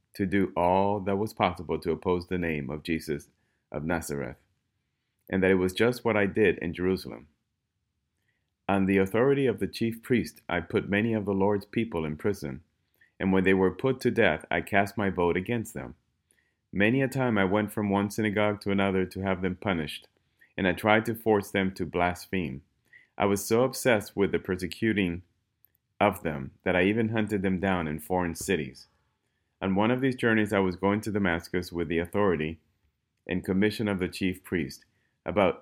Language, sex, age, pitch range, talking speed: English, male, 30-49, 85-105 Hz, 190 wpm